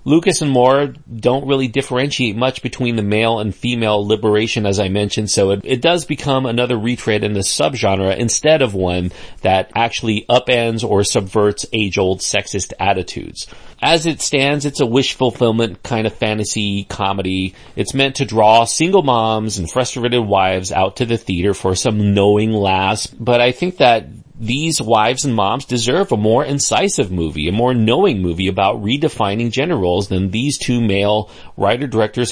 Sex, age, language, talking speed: male, 40-59, English, 165 wpm